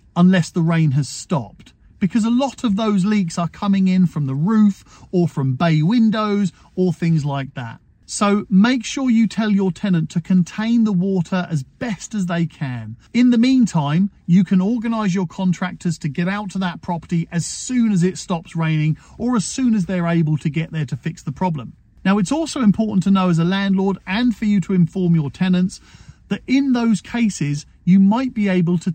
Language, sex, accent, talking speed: English, male, British, 205 wpm